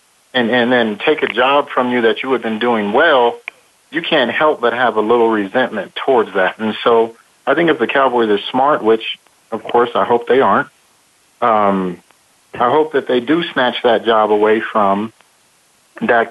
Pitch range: 110-125 Hz